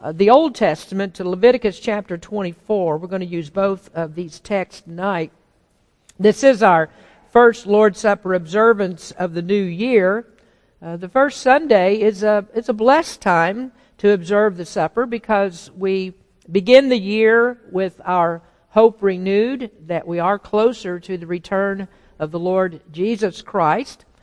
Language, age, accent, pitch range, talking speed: English, 50-69, American, 180-220 Hz, 150 wpm